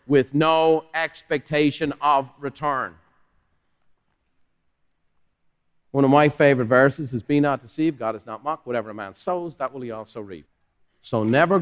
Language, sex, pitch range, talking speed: English, male, 125-160 Hz, 150 wpm